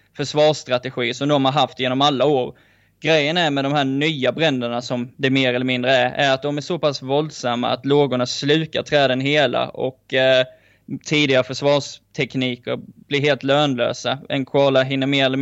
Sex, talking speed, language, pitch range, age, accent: male, 175 wpm, Swedish, 125-145 Hz, 10-29, native